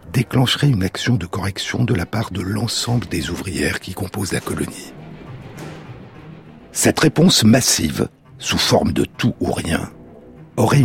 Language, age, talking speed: French, 60-79, 145 wpm